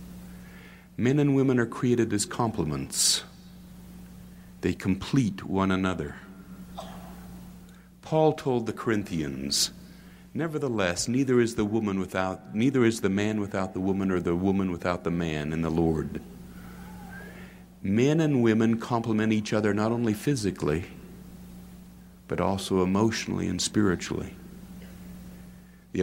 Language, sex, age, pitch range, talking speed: English, male, 60-79, 85-140 Hz, 110 wpm